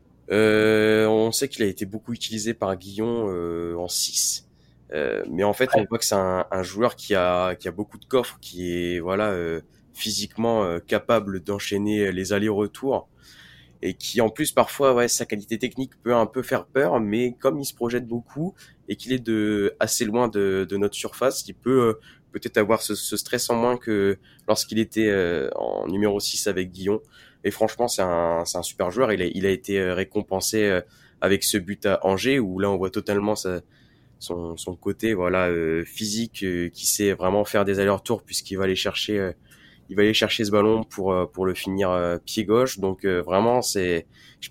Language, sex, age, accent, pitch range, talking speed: French, male, 20-39, French, 95-115 Hz, 195 wpm